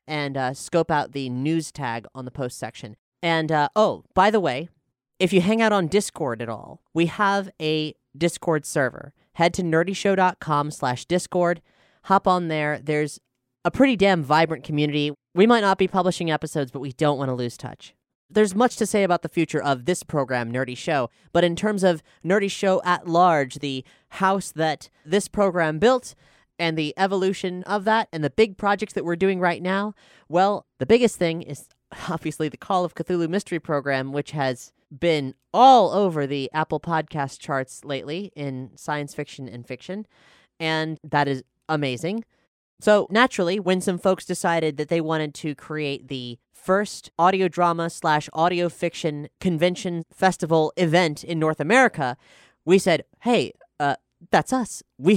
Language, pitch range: English, 145-190 Hz